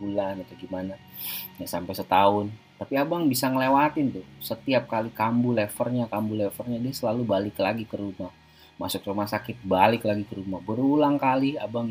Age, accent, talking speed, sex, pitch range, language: 30-49, native, 165 wpm, male, 95-130 Hz, Indonesian